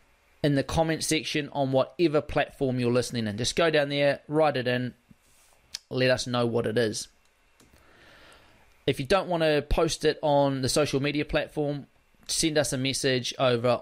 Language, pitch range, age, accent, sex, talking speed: English, 120-155 Hz, 20-39, Australian, male, 175 wpm